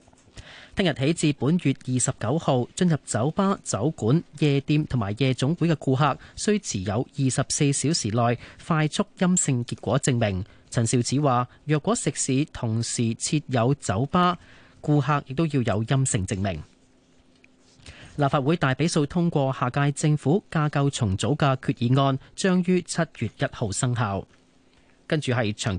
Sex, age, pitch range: male, 30-49, 120-155 Hz